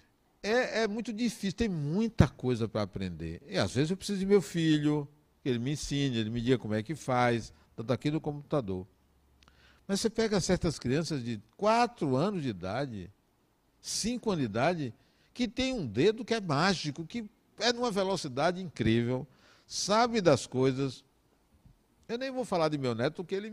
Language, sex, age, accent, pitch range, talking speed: Portuguese, male, 60-79, Brazilian, 120-195 Hz, 180 wpm